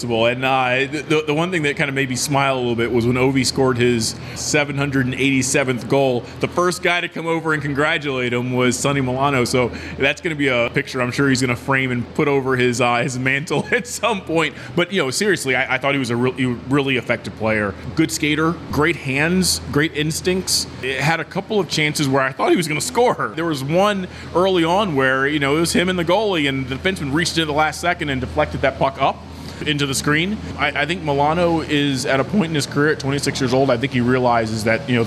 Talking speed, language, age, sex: 245 wpm, English, 20-39, male